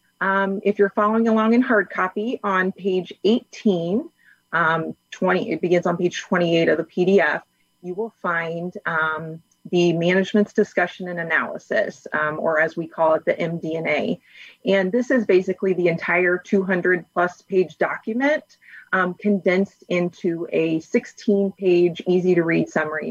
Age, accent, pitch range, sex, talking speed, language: 30-49, American, 170-200 Hz, female, 145 wpm, English